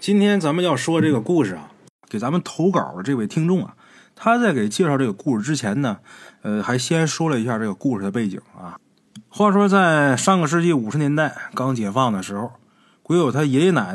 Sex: male